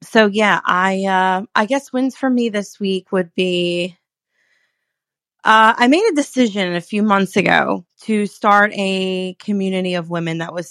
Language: English